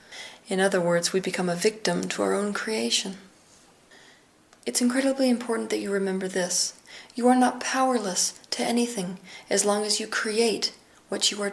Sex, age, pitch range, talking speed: female, 30-49, 185-215 Hz, 165 wpm